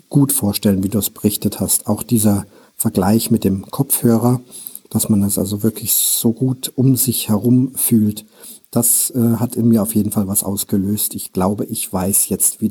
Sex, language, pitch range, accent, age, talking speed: male, German, 105-125 Hz, German, 50-69, 190 wpm